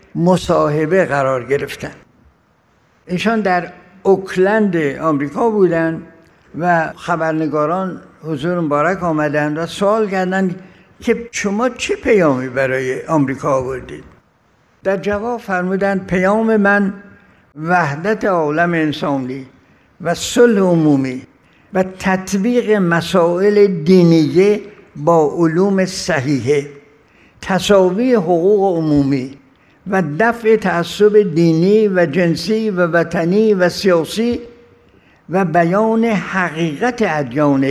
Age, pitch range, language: 60-79, 155-200 Hz, Persian